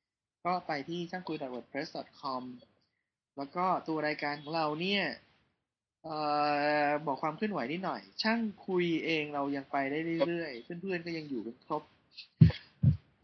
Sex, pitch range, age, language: male, 145-180 Hz, 20-39, Thai